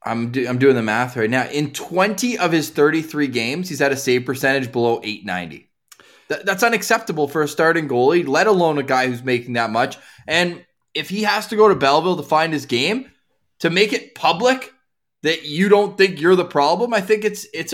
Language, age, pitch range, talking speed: English, 20-39, 145-215 Hz, 205 wpm